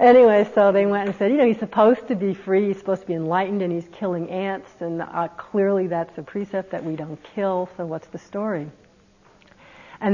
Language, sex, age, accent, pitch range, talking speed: English, female, 60-79, American, 180-225 Hz, 220 wpm